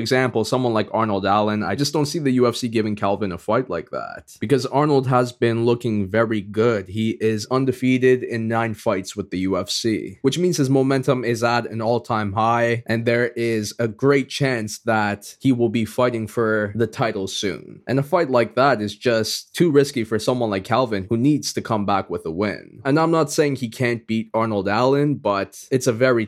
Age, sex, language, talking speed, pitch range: 20-39, male, English, 210 wpm, 105-130 Hz